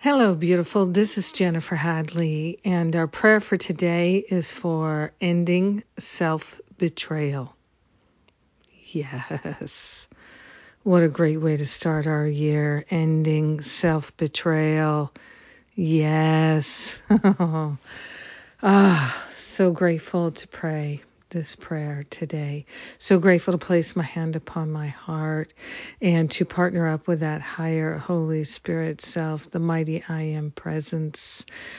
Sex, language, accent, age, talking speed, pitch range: female, English, American, 50-69, 115 wpm, 155-185 Hz